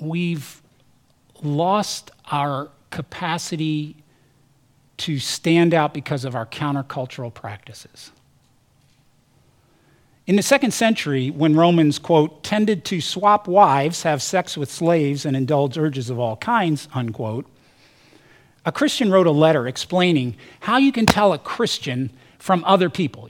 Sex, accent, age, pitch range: male, American, 50-69, 140-200 Hz